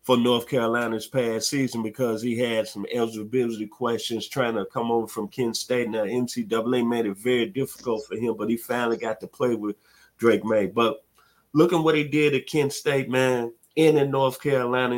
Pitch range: 115-145 Hz